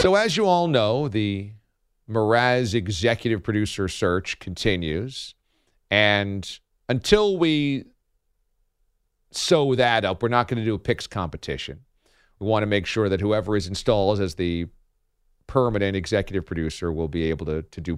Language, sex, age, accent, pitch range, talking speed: English, male, 40-59, American, 90-115 Hz, 150 wpm